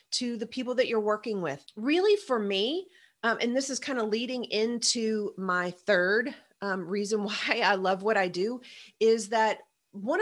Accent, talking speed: American, 180 wpm